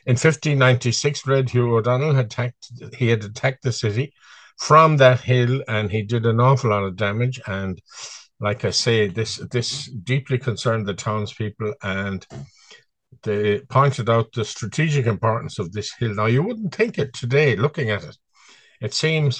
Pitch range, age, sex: 105-135 Hz, 60-79, male